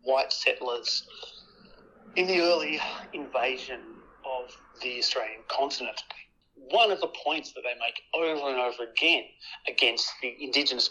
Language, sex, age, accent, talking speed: English, male, 40-59, Australian, 130 wpm